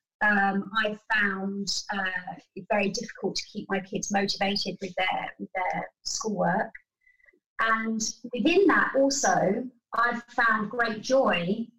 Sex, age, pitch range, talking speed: female, 30-49, 195-245 Hz, 120 wpm